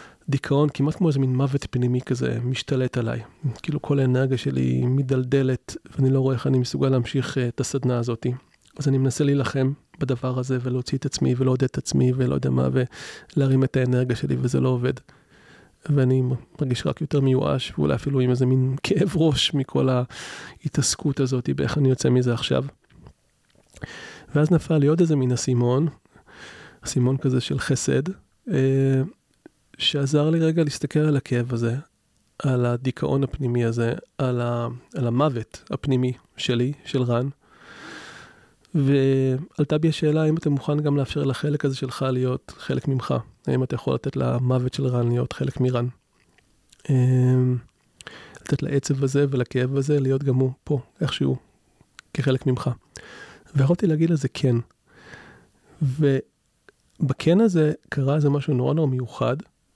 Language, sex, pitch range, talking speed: Hebrew, male, 125-145 Hz, 145 wpm